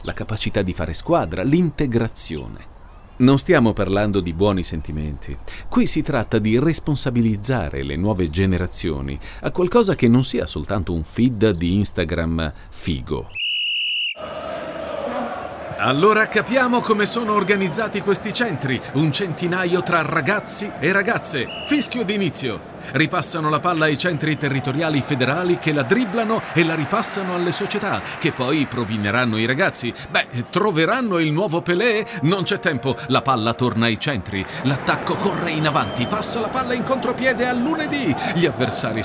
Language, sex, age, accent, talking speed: Italian, male, 40-59, native, 140 wpm